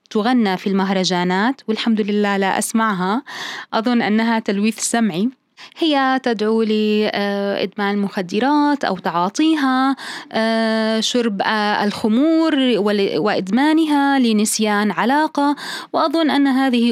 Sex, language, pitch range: female, Arabic, 210-265 Hz